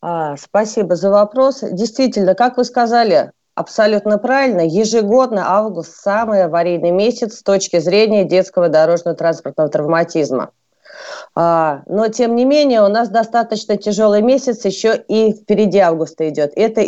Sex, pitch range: female, 180-230 Hz